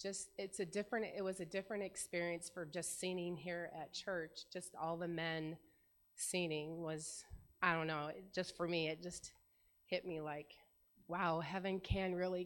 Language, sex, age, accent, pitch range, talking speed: English, female, 30-49, American, 160-190 Hz, 180 wpm